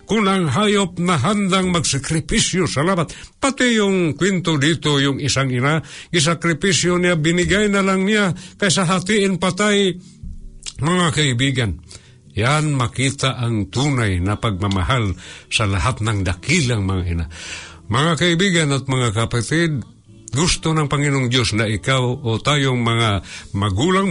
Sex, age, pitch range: male, 60-79, 110-170 Hz